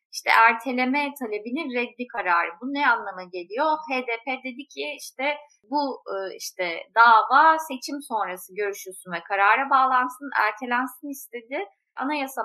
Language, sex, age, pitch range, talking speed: Turkish, female, 30-49, 210-280 Hz, 120 wpm